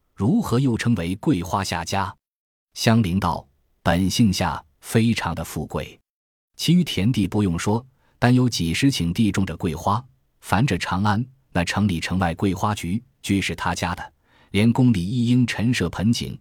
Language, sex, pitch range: Chinese, male, 85-115 Hz